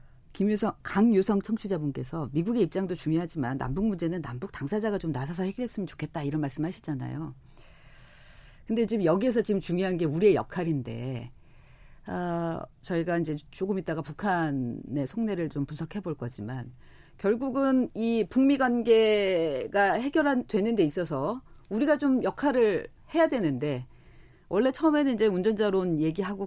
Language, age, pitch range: Korean, 40-59, 155-225 Hz